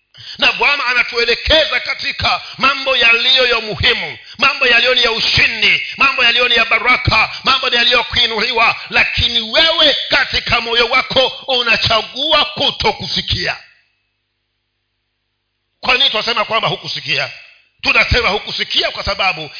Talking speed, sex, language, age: 110 wpm, male, Swahili, 50-69